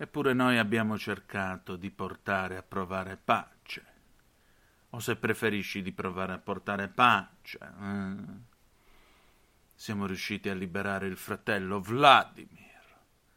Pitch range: 95-120 Hz